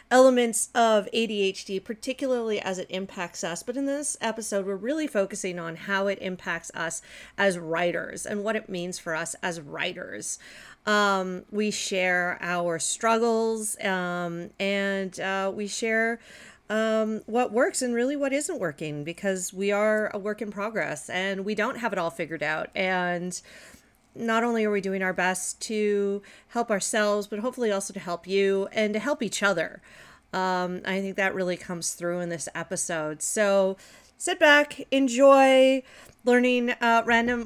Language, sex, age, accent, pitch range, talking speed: English, female, 40-59, American, 180-220 Hz, 165 wpm